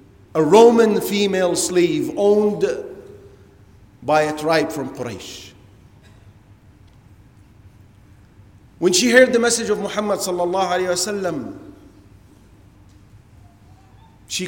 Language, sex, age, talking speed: English, male, 40-59, 75 wpm